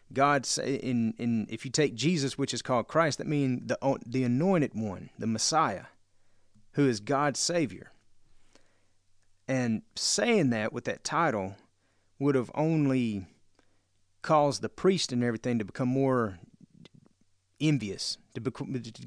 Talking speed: 140 wpm